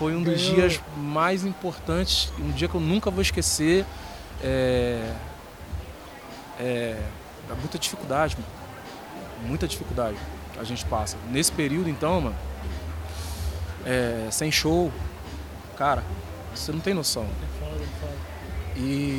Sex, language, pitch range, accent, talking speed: male, Portuguese, 85-140 Hz, Brazilian, 115 wpm